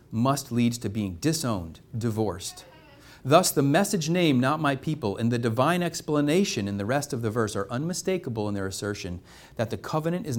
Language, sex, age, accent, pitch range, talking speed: English, male, 40-59, American, 115-165 Hz, 185 wpm